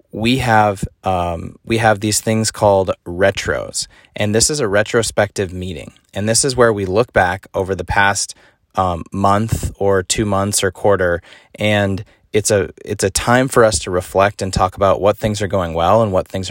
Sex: male